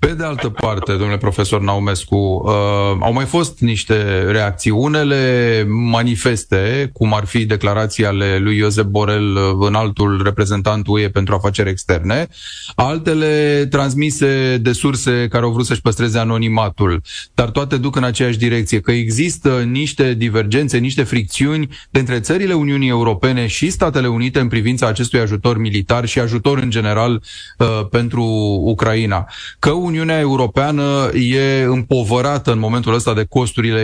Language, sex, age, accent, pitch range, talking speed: Romanian, male, 30-49, native, 110-135 Hz, 140 wpm